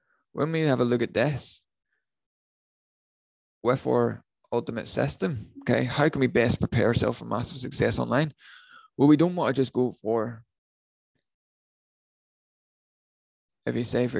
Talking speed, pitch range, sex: 140 wpm, 115-140 Hz, male